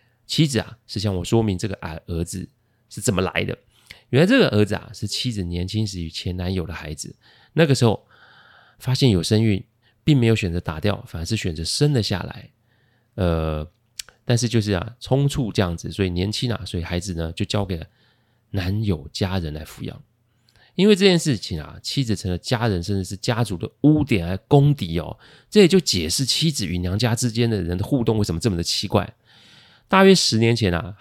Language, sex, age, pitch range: Chinese, male, 30-49, 95-125 Hz